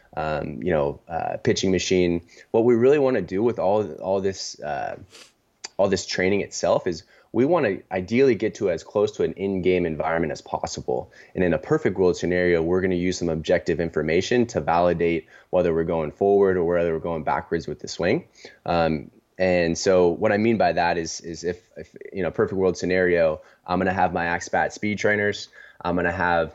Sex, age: male, 20-39